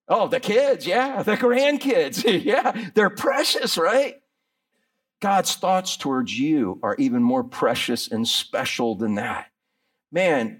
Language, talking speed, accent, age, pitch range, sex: English, 130 wpm, American, 50-69, 200-260 Hz, male